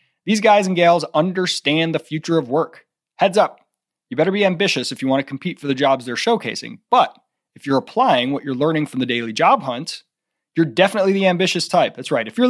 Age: 30-49